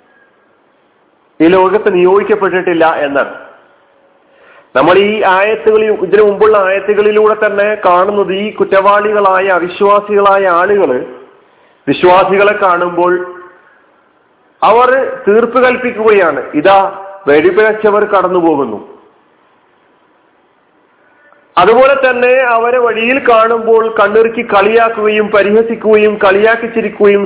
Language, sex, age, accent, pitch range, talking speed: Malayalam, male, 40-59, native, 185-230 Hz, 75 wpm